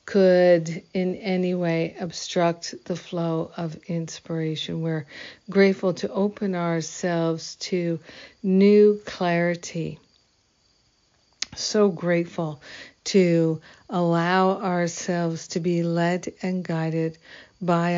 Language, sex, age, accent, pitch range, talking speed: English, female, 60-79, American, 165-185 Hz, 95 wpm